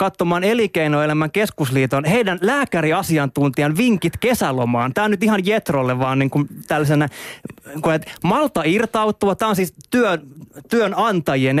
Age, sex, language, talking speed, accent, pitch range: 20-39, male, Finnish, 125 wpm, native, 150-220 Hz